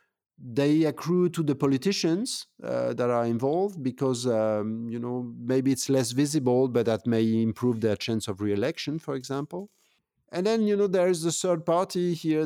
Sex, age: male, 50-69